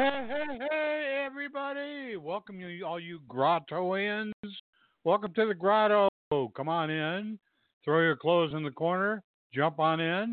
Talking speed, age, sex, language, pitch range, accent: 145 wpm, 60-79, male, English, 130-200 Hz, American